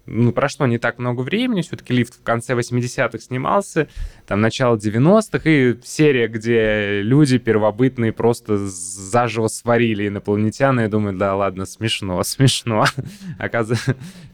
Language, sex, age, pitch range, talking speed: Russian, male, 20-39, 105-125 Hz, 130 wpm